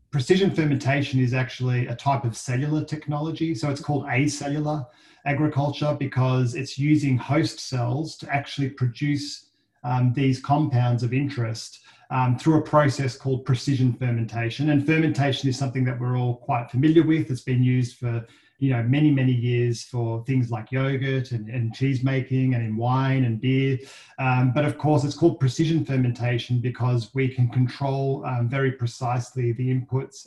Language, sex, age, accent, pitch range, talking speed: English, male, 30-49, Australian, 125-140 Hz, 165 wpm